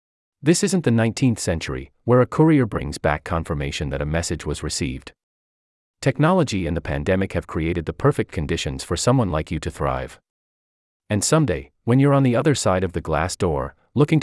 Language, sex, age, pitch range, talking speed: English, male, 30-49, 75-115 Hz, 185 wpm